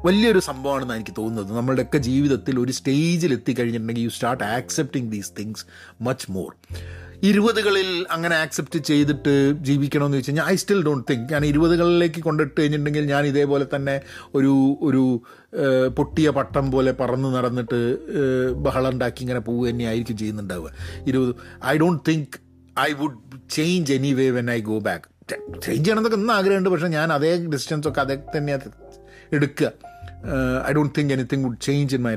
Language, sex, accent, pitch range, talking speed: Malayalam, male, native, 120-155 Hz, 155 wpm